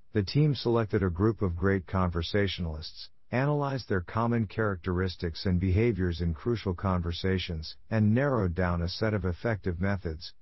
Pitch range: 85-120 Hz